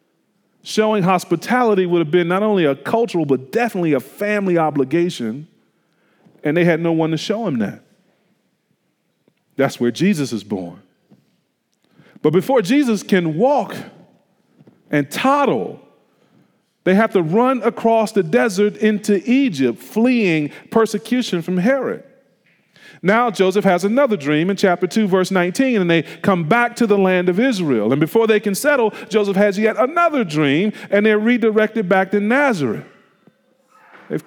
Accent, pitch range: American, 155-215 Hz